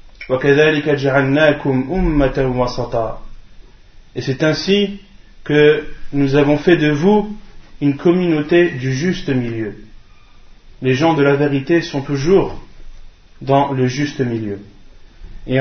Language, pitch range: French, 125-170 Hz